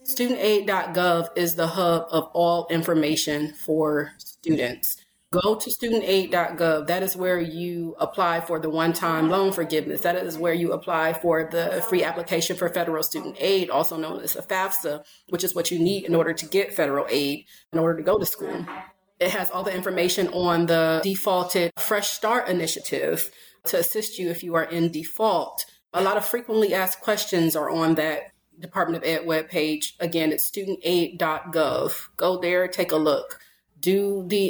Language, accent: English, American